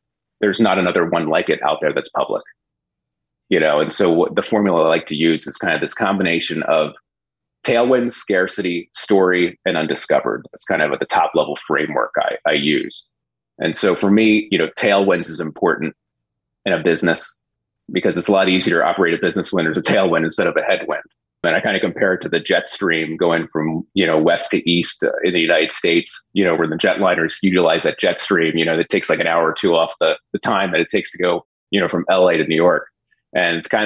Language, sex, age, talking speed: English, male, 30-49, 230 wpm